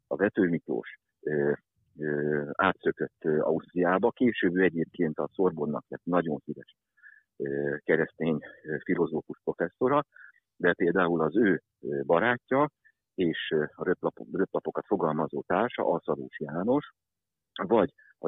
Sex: male